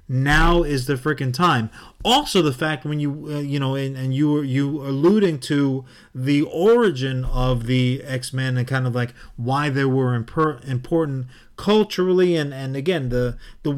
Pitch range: 130-175 Hz